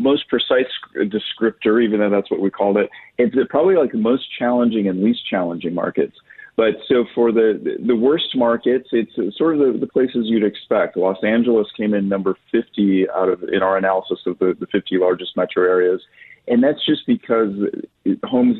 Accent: American